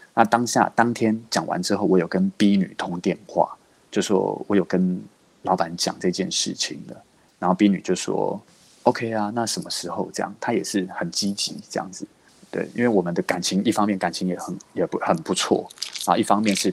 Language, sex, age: Chinese, male, 20-39